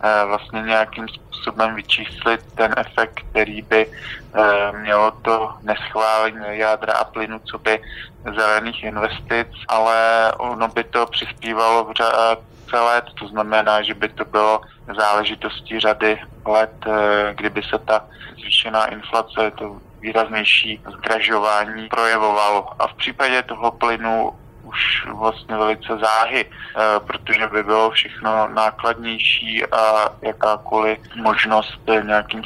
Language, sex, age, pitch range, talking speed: Slovak, male, 20-39, 110-115 Hz, 110 wpm